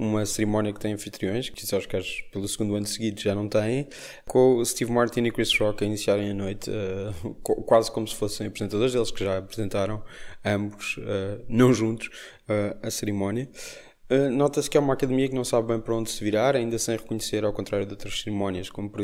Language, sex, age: Portuguese, male, 20-39